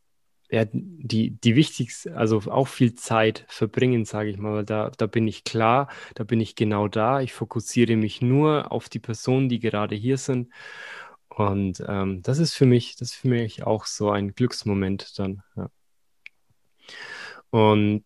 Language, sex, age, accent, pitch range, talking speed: German, male, 20-39, German, 110-125 Hz, 170 wpm